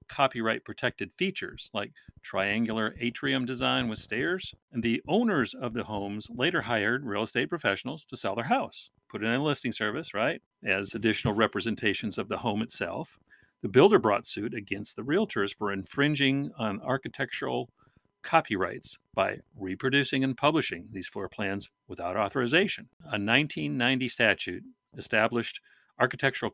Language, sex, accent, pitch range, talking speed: English, male, American, 105-135 Hz, 140 wpm